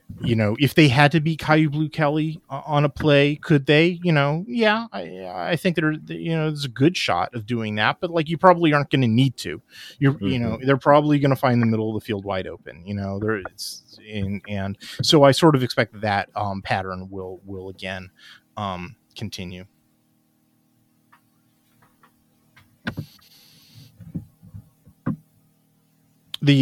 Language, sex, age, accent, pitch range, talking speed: English, male, 30-49, American, 105-145 Hz, 175 wpm